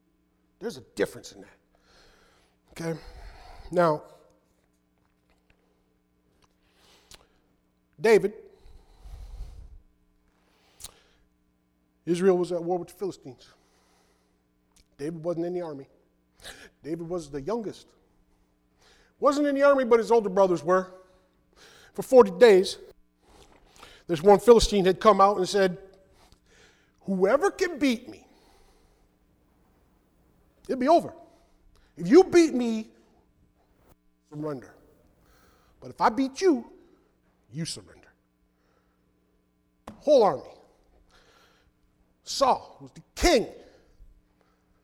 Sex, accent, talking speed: male, American, 90 wpm